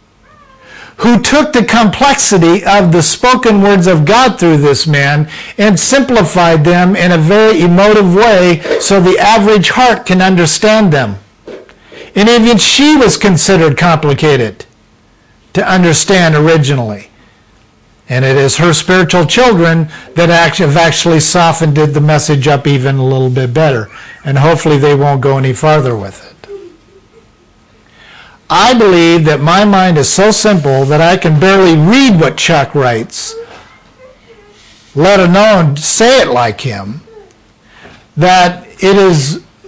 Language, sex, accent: English, male, American